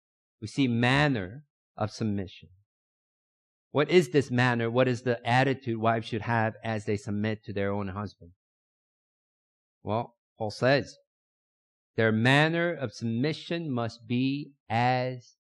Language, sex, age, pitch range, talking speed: English, male, 50-69, 115-155 Hz, 130 wpm